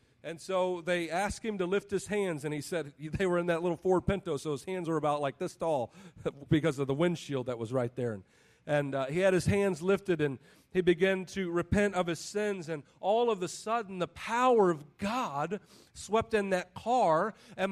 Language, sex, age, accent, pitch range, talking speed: English, male, 40-59, American, 165-215 Hz, 220 wpm